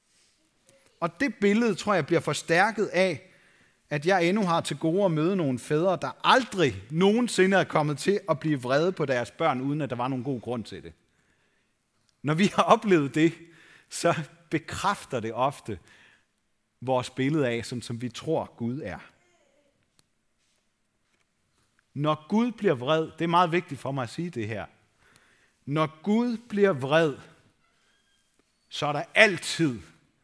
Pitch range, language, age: 130-185 Hz, Danish, 30-49